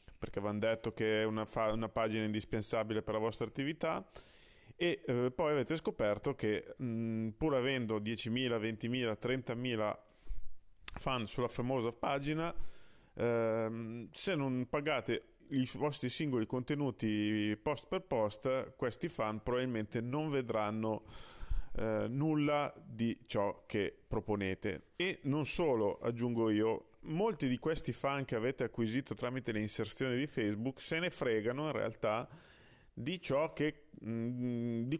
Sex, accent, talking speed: male, native, 135 wpm